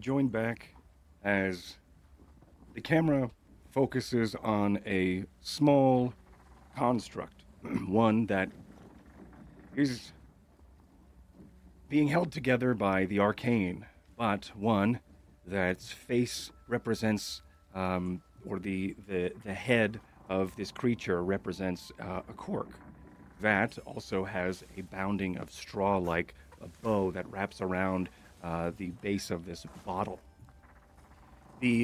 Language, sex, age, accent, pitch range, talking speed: English, male, 30-49, American, 90-110 Hz, 105 wpm